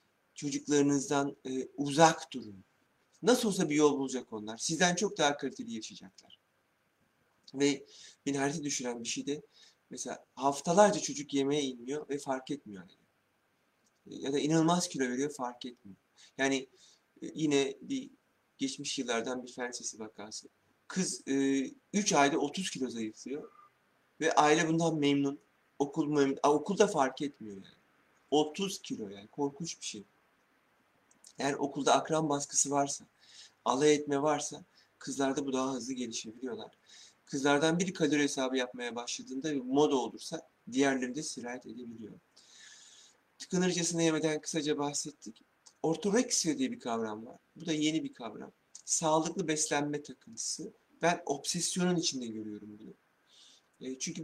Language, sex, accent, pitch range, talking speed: Turkish, male, native, 130-155 Hz, 130 wpm